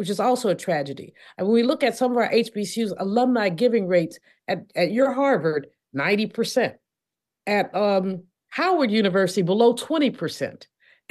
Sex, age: female, 50-69